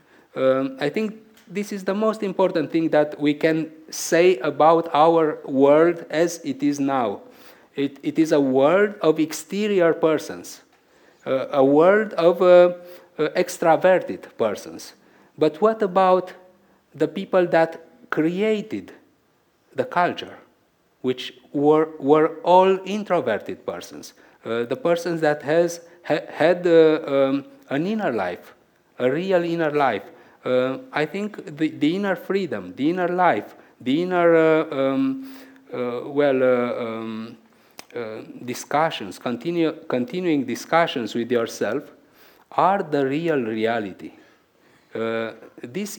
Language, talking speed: English, 125 wpm